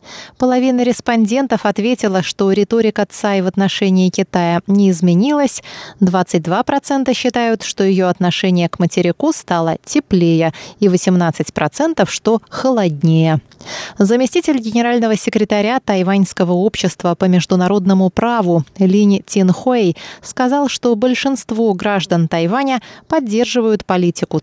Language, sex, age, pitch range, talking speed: Russian, female, 20-39, 180-235 Hz, 100 wpm